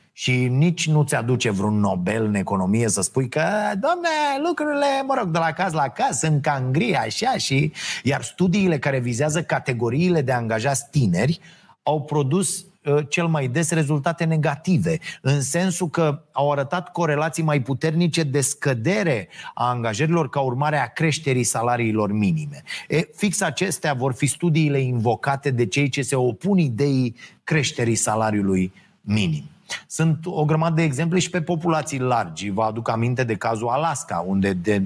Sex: male